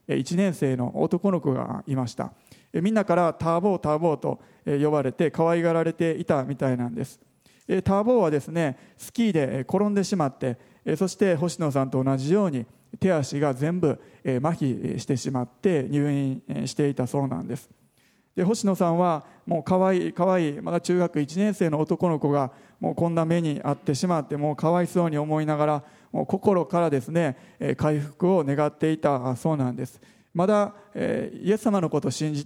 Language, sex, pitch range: Japanese, male, 145-185 Hz